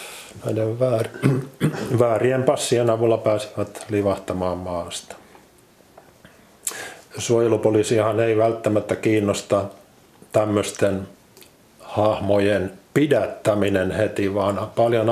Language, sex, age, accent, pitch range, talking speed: Finnish, male, 50-69, native, 100-115 Hz, 65 wpm